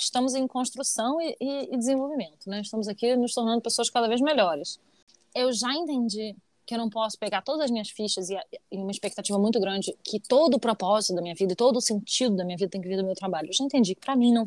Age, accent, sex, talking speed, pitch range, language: 20-39, Brazilian, female, 255 wpm, 210-295 Hz, Portuguese